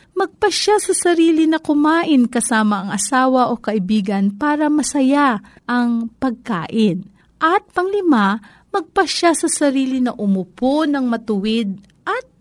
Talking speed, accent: 115 wpm, native